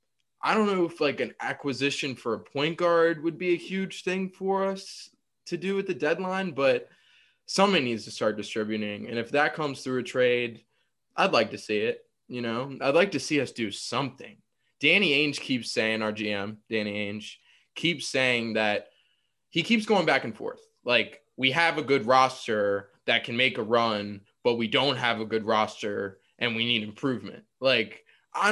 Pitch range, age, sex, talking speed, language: 115-155 Hz, 20-39, male, 190 wpm, English